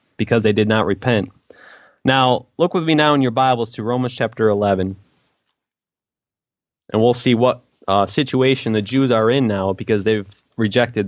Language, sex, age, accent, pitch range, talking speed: English, male, 20-39, American, 110-135 Hz, 170 wpm